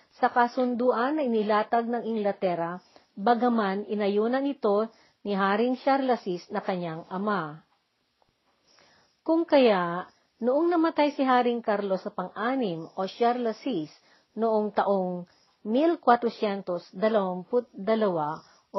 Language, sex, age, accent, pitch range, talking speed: Filipino, female, 50-69, native, 195-255 Hz, 95 wpm